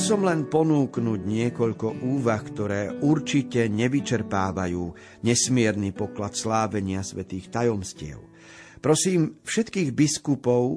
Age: 50-69